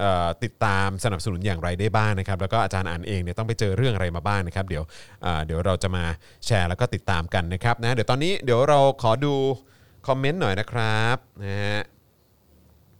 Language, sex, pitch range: Thai, male, 100-125 Hz